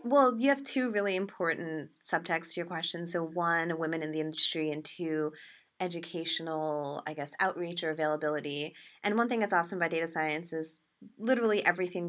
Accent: American